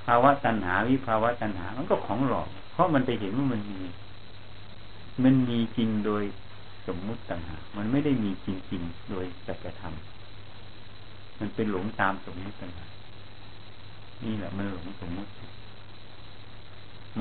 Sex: male